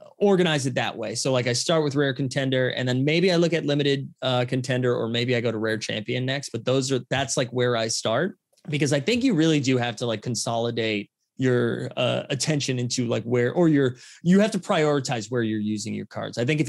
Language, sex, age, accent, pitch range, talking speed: English, male, 20-39, American, 115-155 Hz, 235 wpm